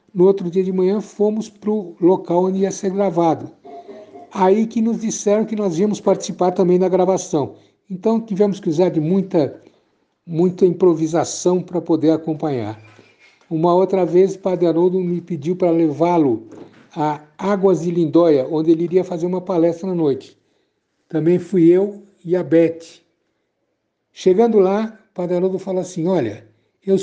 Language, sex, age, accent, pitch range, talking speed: Portuguese, male, 60-79, Brazilian, 160-190 Hz, 155 wpm